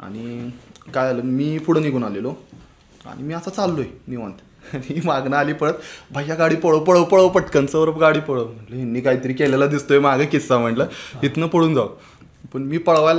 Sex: male